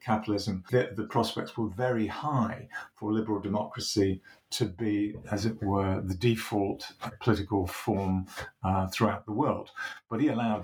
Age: 50-69